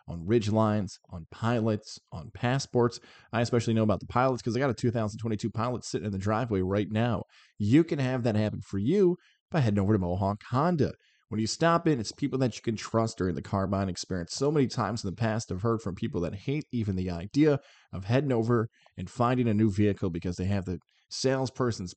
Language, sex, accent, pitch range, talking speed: English, male, American, 100-125 Hz, 220 wpm